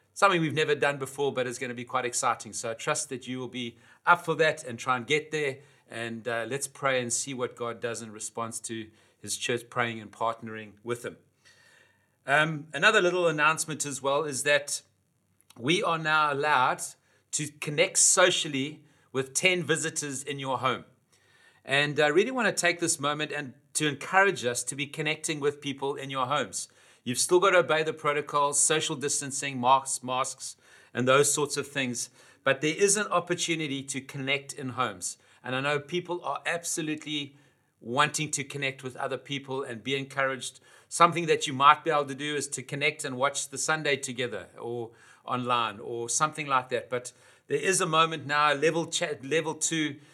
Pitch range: 125-155 Hz